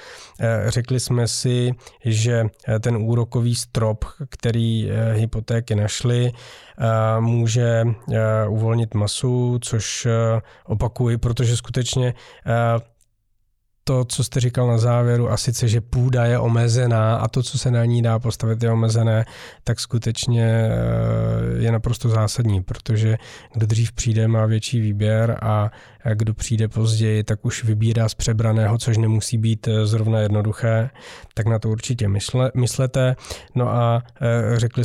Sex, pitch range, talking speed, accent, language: male, 110-120 Hz, 125 wpm, native, Czech